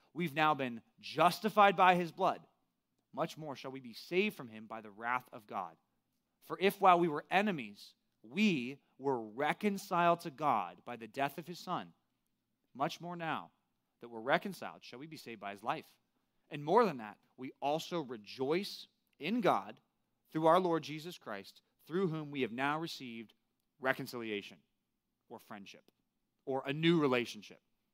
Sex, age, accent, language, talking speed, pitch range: male, 30-49, American, English, 165 wpm, 130-180 Hz